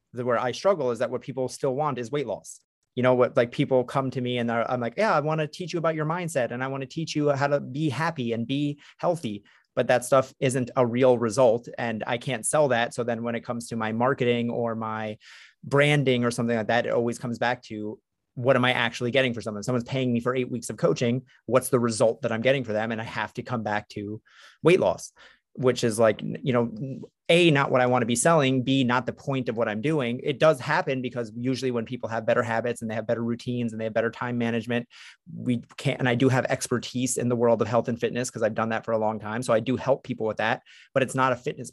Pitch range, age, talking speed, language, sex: 115-130 Hz, 30-49, 270 wpm, English, male